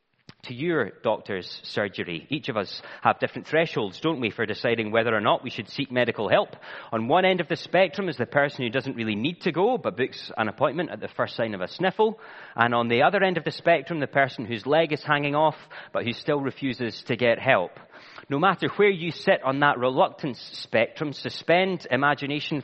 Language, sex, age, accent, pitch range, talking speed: English, male, 30-49, British, 130-170 Hz, 215 wpm